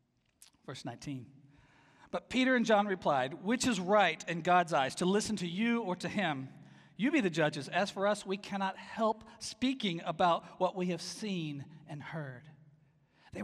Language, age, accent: English, 40-59, American